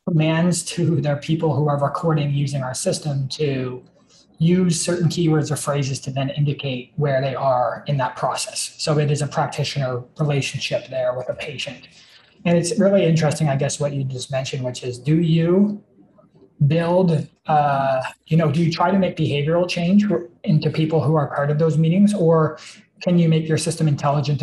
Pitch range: 140-175 Hz